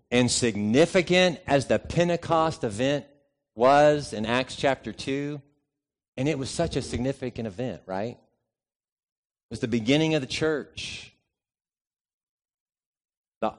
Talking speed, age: 120 wpm, 50-69